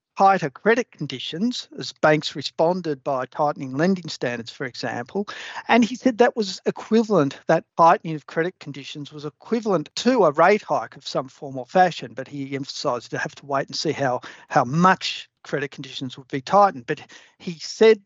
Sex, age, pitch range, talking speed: male, 50-69, 140-185 Hz, 180 wpm